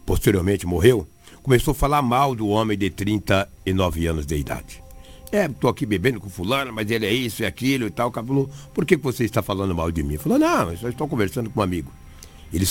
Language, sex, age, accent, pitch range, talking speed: Portuguese, male, 60-79, Brazilian, 85-110 Hz, 215 wpm